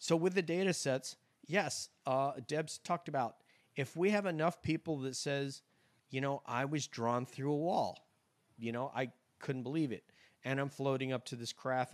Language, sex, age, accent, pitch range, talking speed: English, male, 40-59, American, 125-140 Hz, 190 wpm